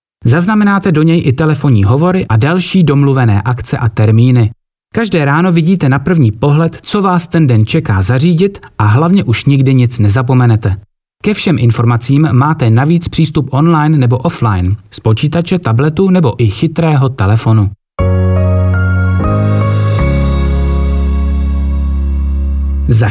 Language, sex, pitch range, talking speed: Czech, male, 110-165 Hz, 120 wpm